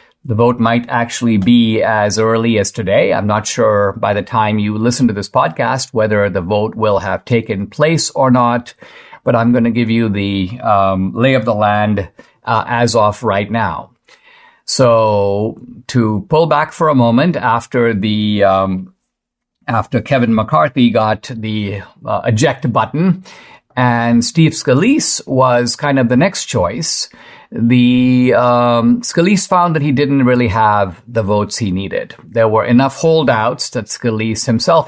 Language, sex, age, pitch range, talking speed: English, male, 50-69, 110-130 Hz, 160 wpm